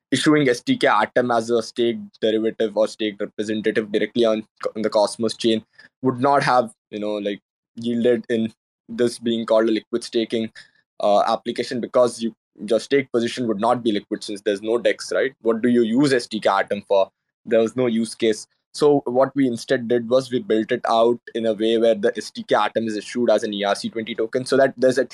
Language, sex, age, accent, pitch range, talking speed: English, male, 20-39, Indian, 110-125 Hz, 205 wpm